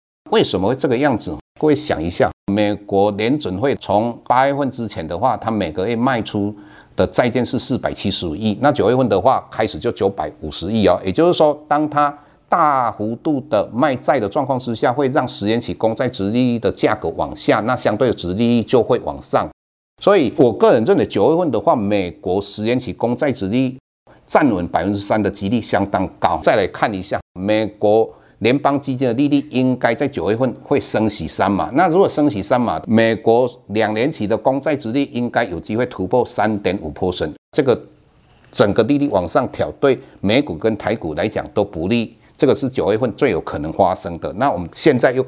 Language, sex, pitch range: Chinese, male, 100-130 Hz